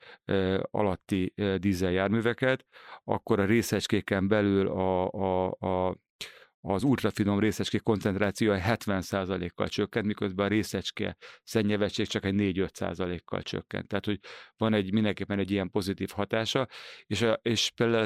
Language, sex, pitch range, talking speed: Hungarian, male, 95-110 Hz, 120 wpm